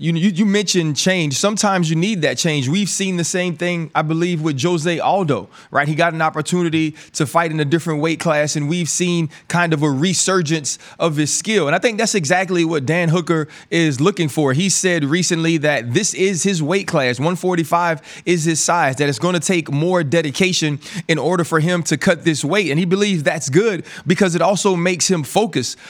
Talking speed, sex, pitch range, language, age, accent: 210 wpm, male, 155-180 Hz, English, 30-49, American